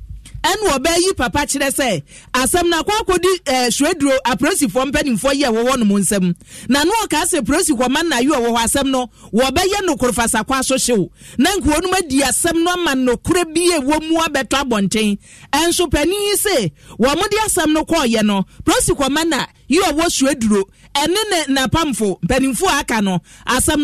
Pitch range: 235-315 Hz